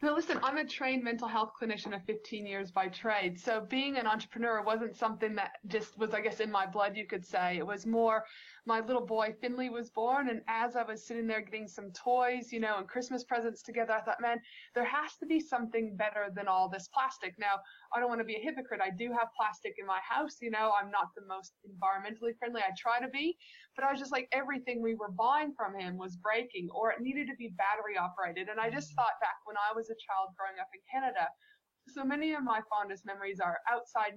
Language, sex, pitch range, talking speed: English, female, 195-245 Hz, 240 wpm